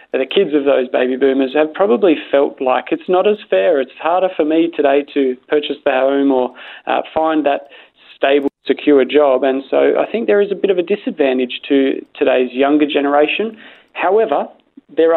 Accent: Australian